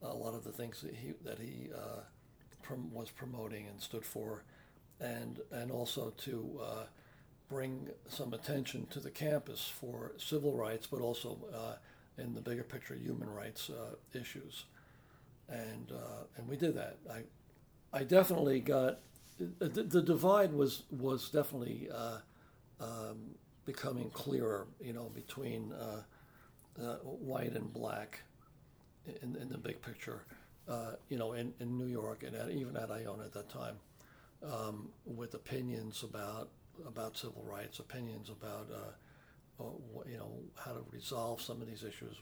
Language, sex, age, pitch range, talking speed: English, male, 60-79, 110-140 Hz, 155 wpm